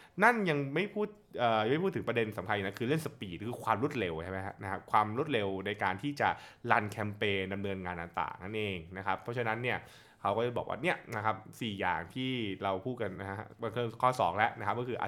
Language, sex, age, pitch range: Thai, male, 20-39, 110-145 Hz